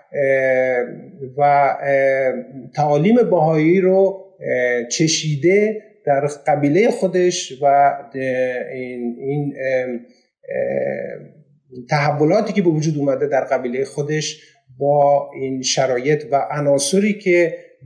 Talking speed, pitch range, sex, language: 85 wpm, 140-190 Hz, male, Persian